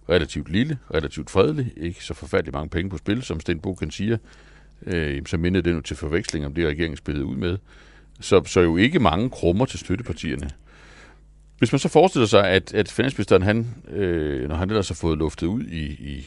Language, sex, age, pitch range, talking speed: Danish, male, 60-79, 75-105 Hz, 205 wpm